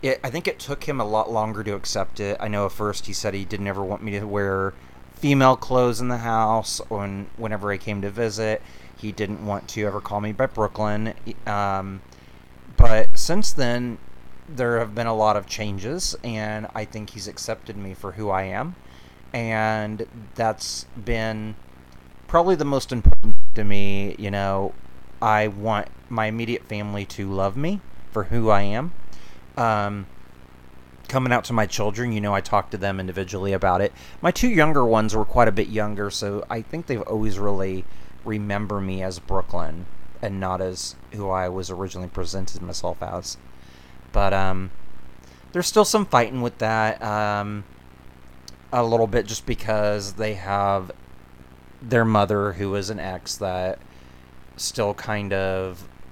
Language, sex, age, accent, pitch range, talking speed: English, male, 30-49, American, 90-110 Hz, 170 wpm